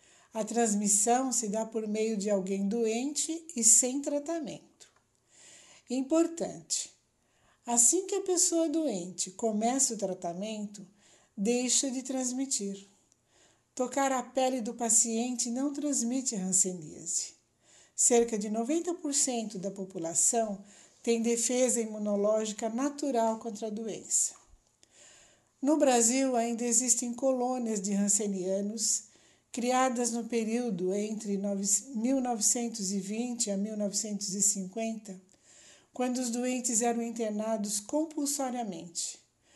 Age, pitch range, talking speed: 60-79, 210-255 Hz, 95 wpm